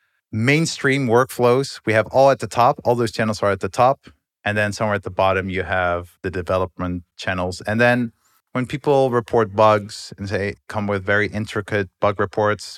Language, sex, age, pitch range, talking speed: English, male, 30-49, 95-115 Hz, 190 wpm